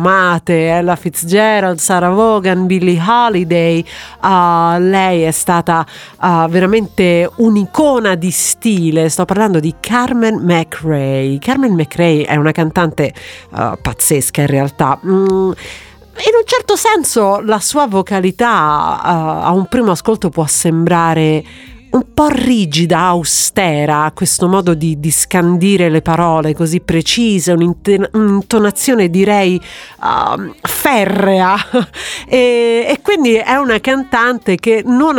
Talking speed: 110 wpm